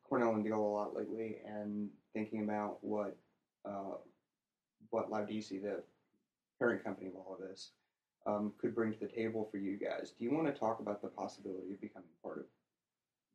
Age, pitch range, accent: 30-49, 105-115 Hz, American